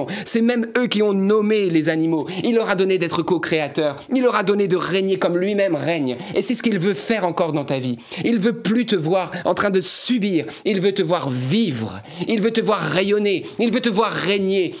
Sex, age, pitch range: male, 30-49, 180-240 Hz